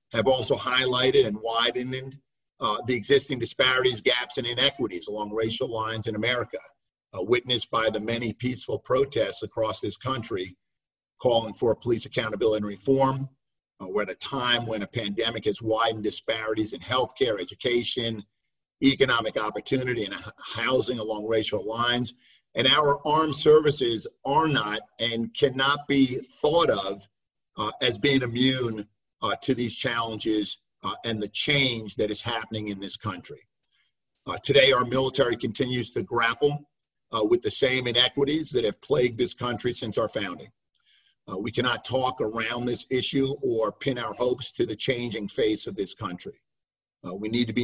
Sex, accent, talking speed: male, American, 160 wpm